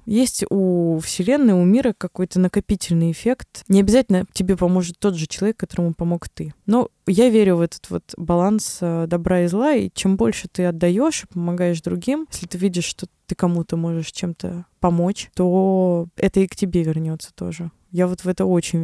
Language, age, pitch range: Russian, 20-39, 165-190 Hz